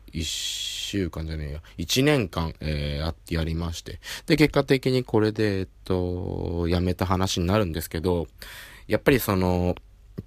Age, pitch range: 20-39, 90-115 Hz